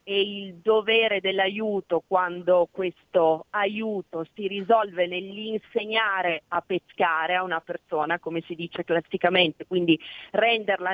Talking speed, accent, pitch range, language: 115 wpm, native, 170-200 Hz, Italian